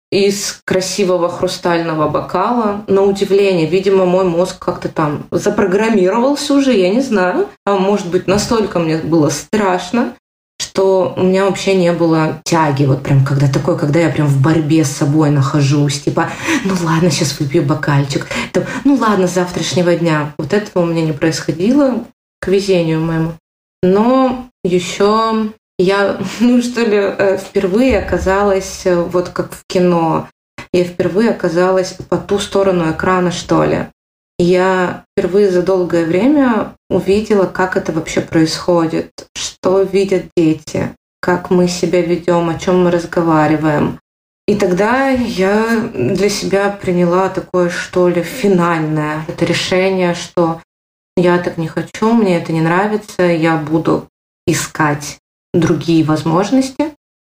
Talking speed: 135 wpm